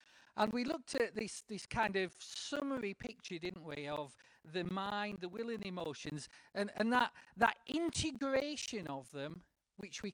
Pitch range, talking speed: 185-250 Hz, 165 wpm